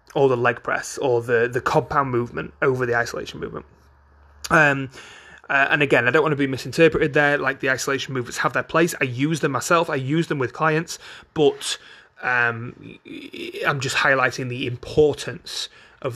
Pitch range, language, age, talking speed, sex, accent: 125-155 Hz, English, 30-49, 180 wpm, male, British